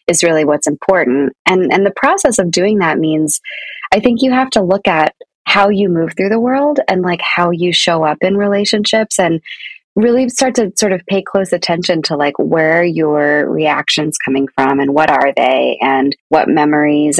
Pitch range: 155-200 Hz